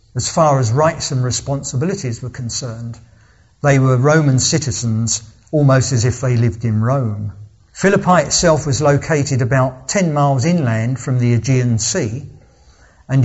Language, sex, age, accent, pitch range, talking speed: English, male, 50-69, British, 115-145 Hz, 145 wpm